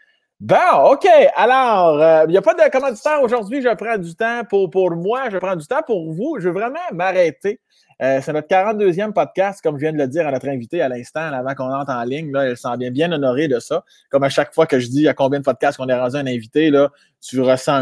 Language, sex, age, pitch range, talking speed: French, male, 20-39, 140-190 Hz, 255 wpm